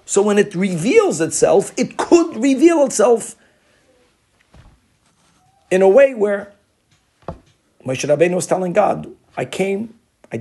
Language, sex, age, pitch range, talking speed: English, male, 50-69, 135-185 Hz, 120 wpm